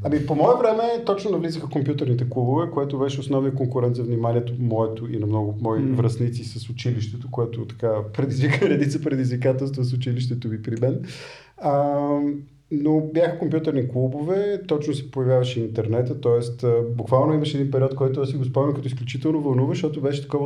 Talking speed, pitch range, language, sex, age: 165 wpm, 125-155 Hz, Bulgarian, male, 40-59